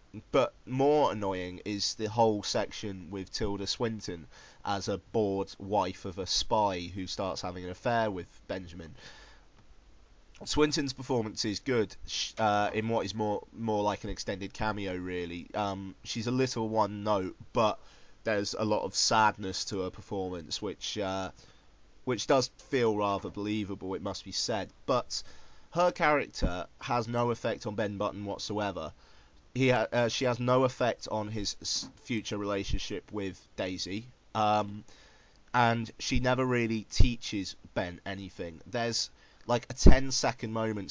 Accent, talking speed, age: British, 145 wpm, 30-49